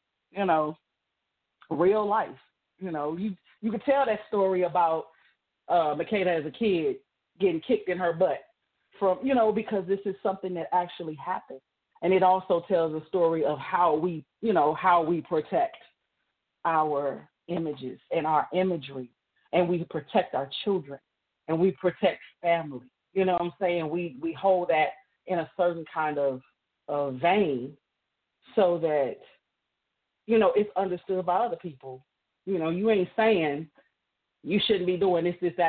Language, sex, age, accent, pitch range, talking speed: English, female, 40-59, American, 145-190 Hz, 165 wpm